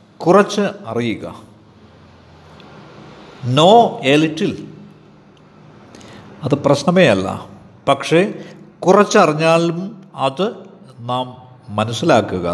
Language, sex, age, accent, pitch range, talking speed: Malayalam, male, 60-79, native, 105-155 Hz, 55 wpm